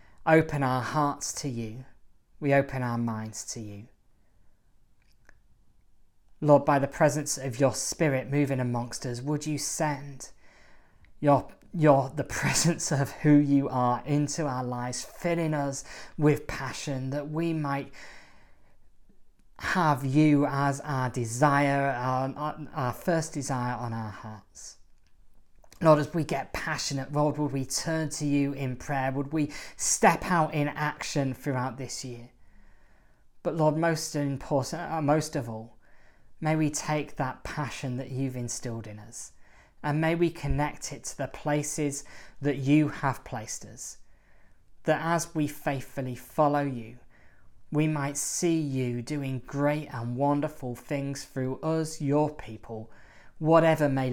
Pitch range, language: 120-150 Hz, English